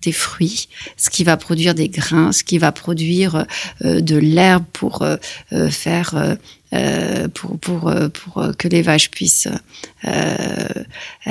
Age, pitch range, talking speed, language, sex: 40-59, 165-210 Hz, 140 wpm, French, female